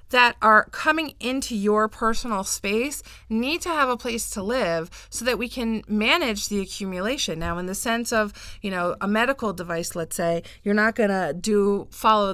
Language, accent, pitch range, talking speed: English, American, 185-245 Hz, 190 wpm